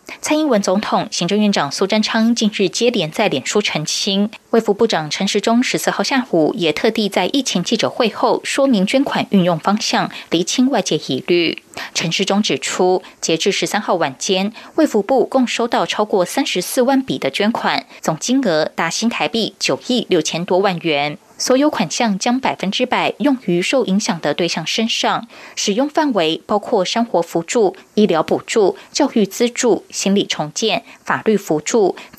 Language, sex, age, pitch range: Chinese, female, 20-39, 180-240 Hz